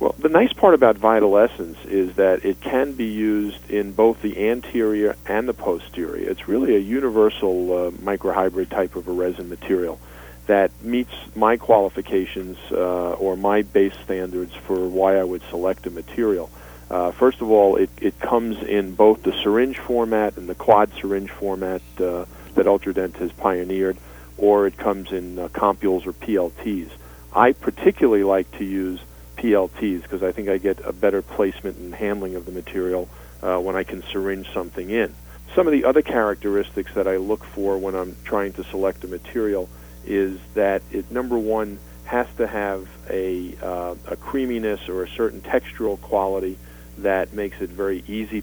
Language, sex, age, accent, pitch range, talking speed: English, male, 40-59, American, 90-105 Hz, 170 wpm